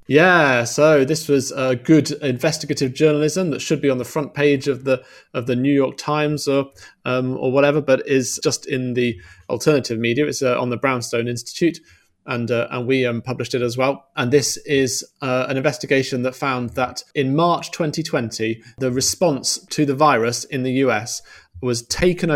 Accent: British